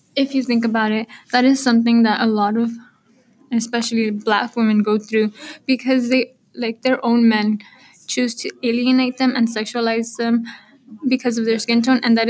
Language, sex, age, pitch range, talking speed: English, female, 10-29, 215-240 Hz, 180 wpm